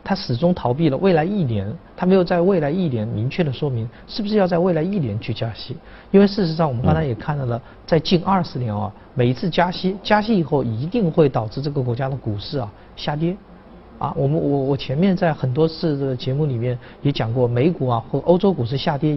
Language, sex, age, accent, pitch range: Chinese, male, 50-69, native, 120-175 Hz